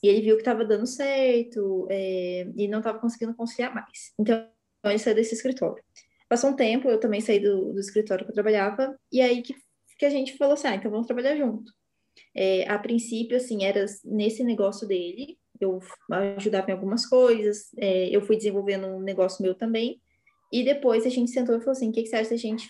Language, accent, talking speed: Portuguese, Brazilian, 215 wpm